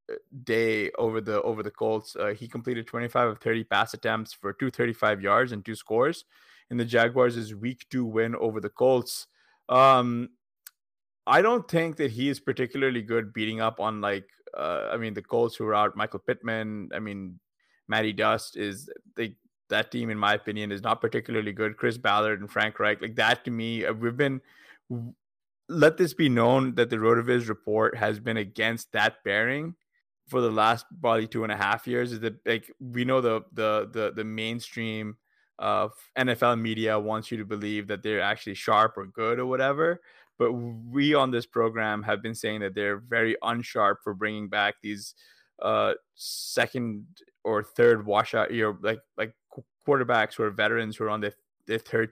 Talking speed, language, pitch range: 190 wpm, English, 105-120 Hz